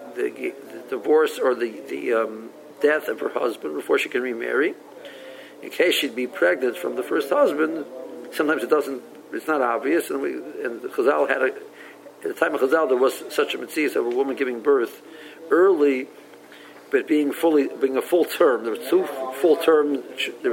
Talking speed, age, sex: 195 wpm, 50-69, male